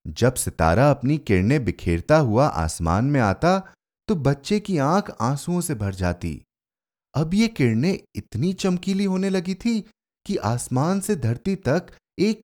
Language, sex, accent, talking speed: Hindi, male, native, 150 wpm